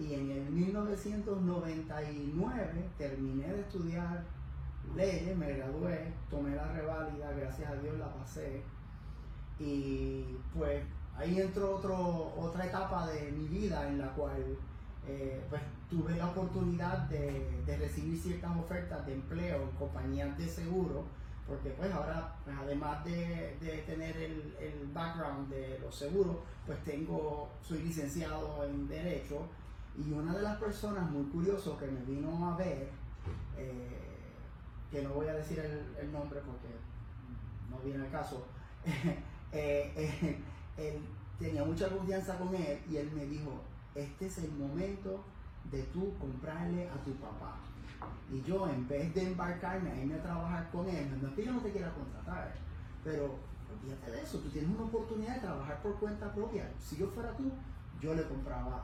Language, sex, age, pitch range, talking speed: Spanish, male, 30-49, 135-175 Hz, 155 wpm